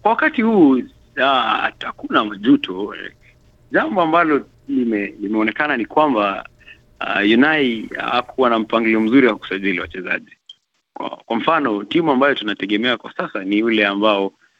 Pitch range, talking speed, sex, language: 105-165 Hz, 140 wpm, male, Swahili